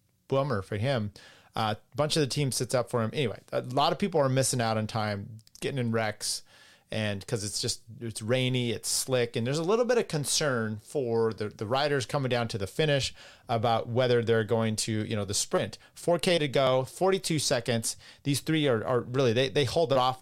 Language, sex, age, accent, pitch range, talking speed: English, male, 30-49, American, 115-145 Hz, 220 wpm